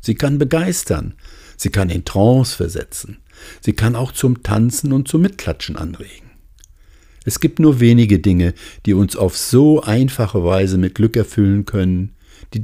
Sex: male